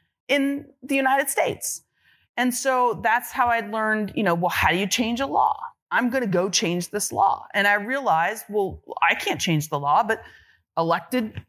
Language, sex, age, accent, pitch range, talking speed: English, female, 30-49, American, 175-235 Hz, 195 wpm